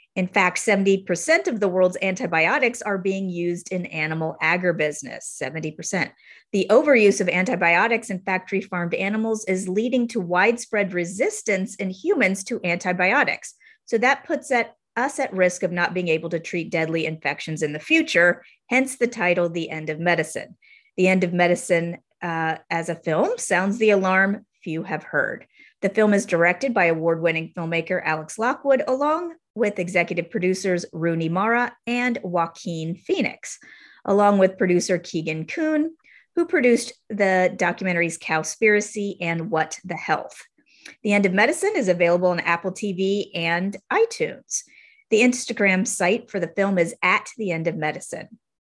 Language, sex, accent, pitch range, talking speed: English, female, American, 170-225 Hz, 150 wpm